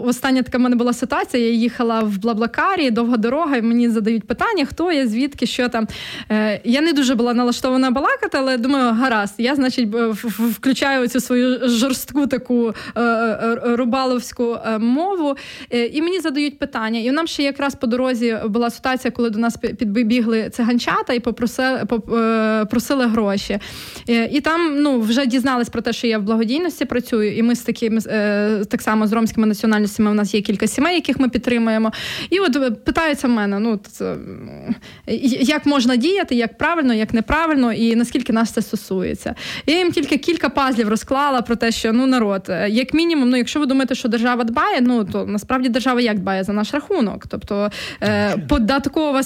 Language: Ukrainian